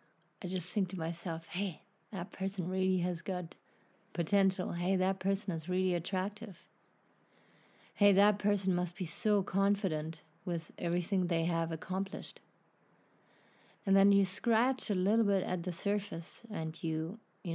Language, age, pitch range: English, 30-49, 175-205 Hz